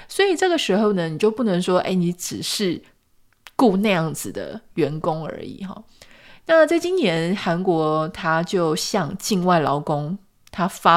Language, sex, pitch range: Chinese, female, 170-215 Hz